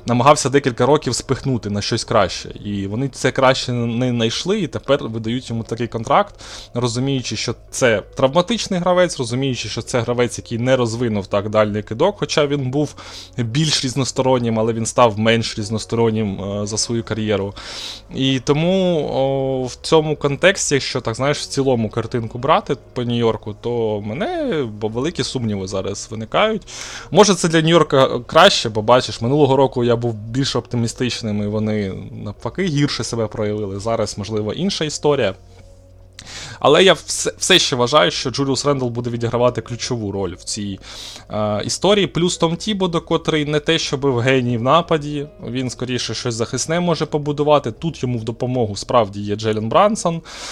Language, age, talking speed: Ukrainian, 20-39, 160 wpm